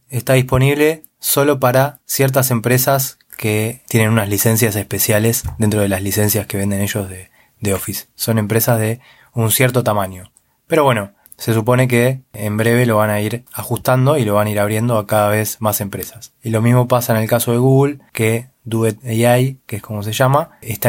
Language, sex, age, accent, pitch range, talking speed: Spanish, male, 20-39, Argentinian, 105-125 Hz, 195 wpm